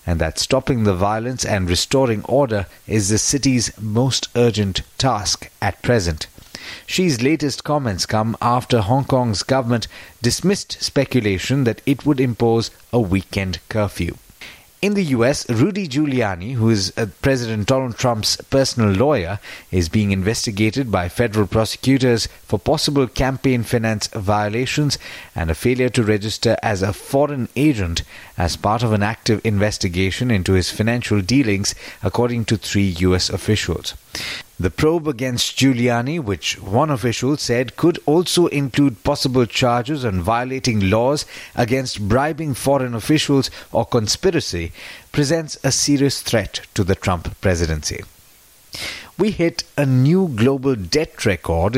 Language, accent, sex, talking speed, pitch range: English, Indian, male, 135 wpm, 100-135 Hz